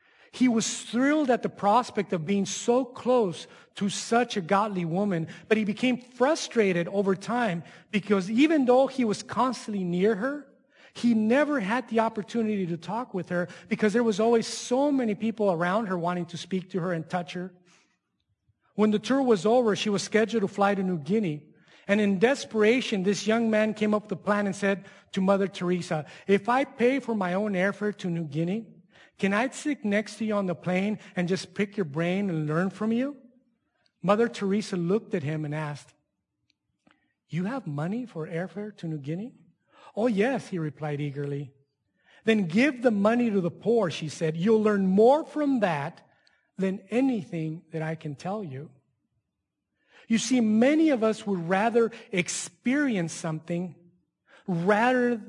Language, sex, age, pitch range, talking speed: English, male, 40-59, 175-230 Hz, 175 wpm